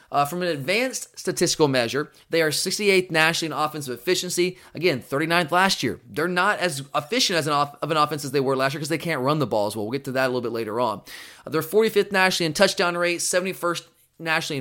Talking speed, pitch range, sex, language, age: 240 wpm, 140-185 Hz, male, English, 20-39